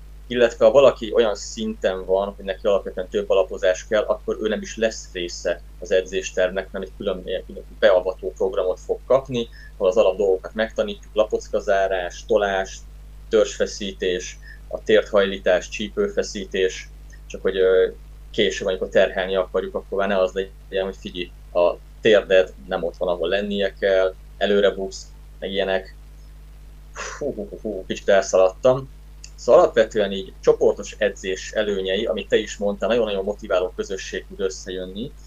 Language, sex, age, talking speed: Hungarian, male, 20-39, 140 wpm